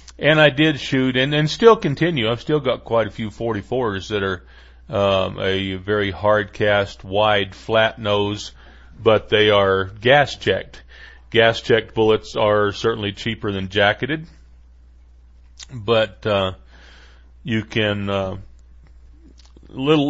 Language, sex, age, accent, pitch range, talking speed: English, male, 40-59, American, 65-105 Hz, 130 wpm